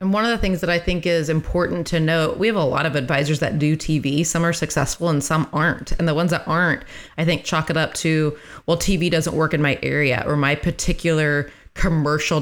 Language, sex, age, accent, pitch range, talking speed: English, female, 30-49, American, 155-175 Hz, 235 wpm